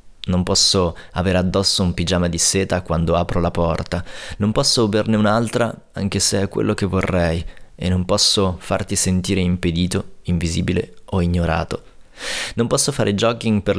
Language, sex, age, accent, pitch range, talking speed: Italian, male, 20-39, native, 90-105 Hz, 155 wpm